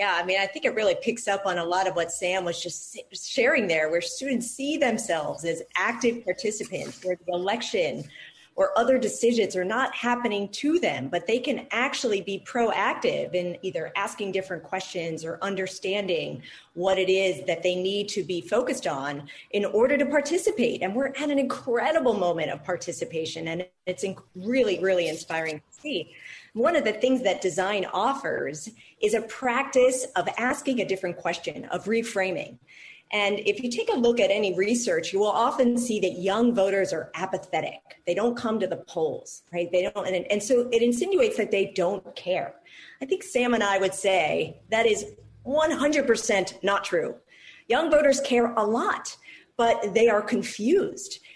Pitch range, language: 180-245 Hz, English